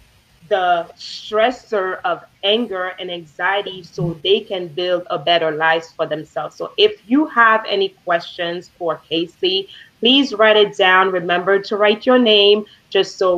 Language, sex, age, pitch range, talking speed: English, female, 30-49, 170-215 Hz, 155 wpm